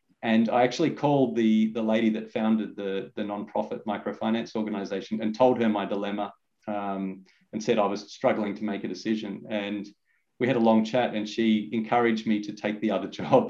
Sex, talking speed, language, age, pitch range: male, 195 wpm, English, 30-49, 105-115 Hz